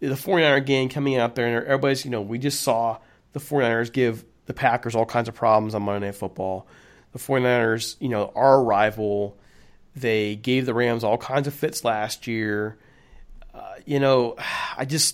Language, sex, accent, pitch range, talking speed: English, male, American, 105-135 Hz, 185 wpm